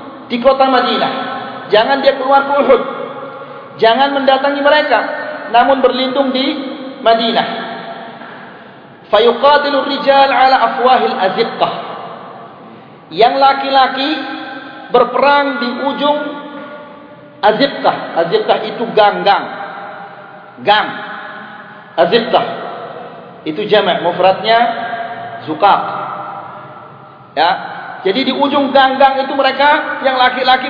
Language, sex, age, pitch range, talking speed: Malay, male, 40-59, 235-275 Hz, 85 wpm